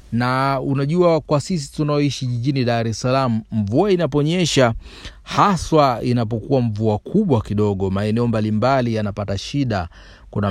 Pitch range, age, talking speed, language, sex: 110-140 Hz, 40-59, 120 wpm, Swahili, male